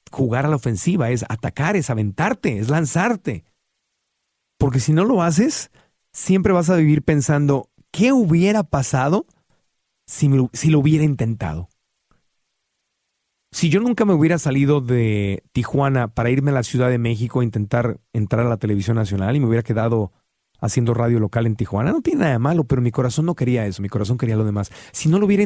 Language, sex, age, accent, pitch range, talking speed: Spanish, male, 40-59, Mexican, 115-155 Hz, 190 wpm